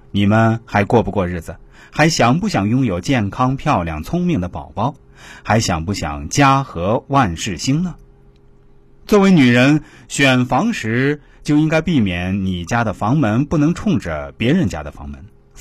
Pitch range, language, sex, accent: 90-145 Hz, Chinese, male, native